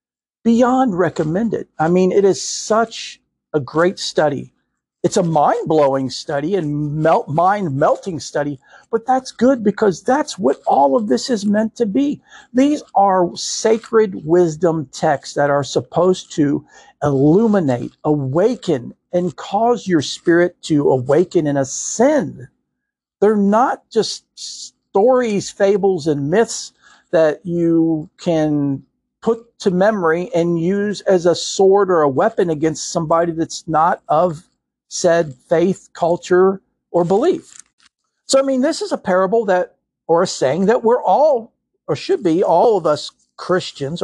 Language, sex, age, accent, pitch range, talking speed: English, male, 50-69, American, 160-225 Hz, 140 wpm